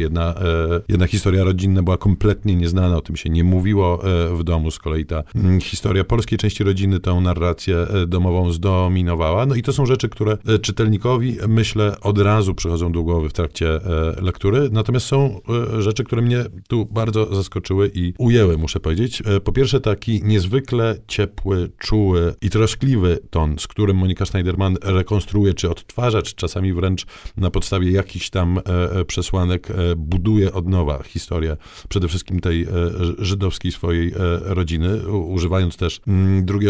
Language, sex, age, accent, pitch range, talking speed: Polish, male, 50-69, native, 85-105 Hz, 145 wpm